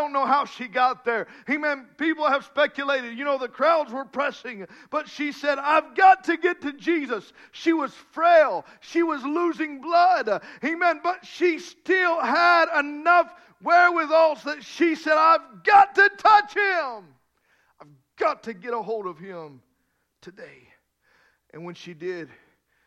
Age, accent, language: 50-69, American, English